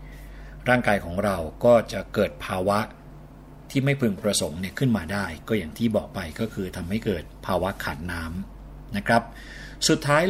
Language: Thai